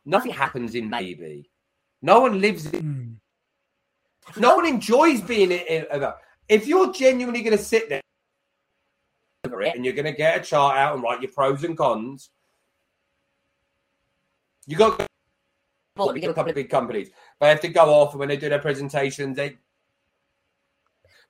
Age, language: 30-49, English